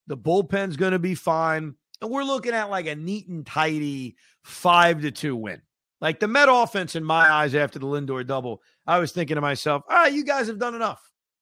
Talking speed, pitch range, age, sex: 220 wpm, 155-220 Hz, 40-59, male